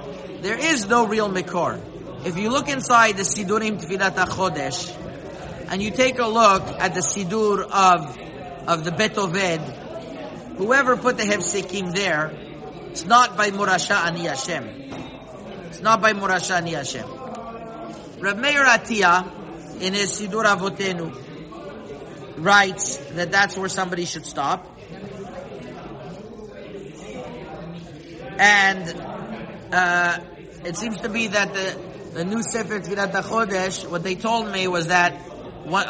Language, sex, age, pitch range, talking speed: English, male, 50-69, 175-205 Hz, 130 wpm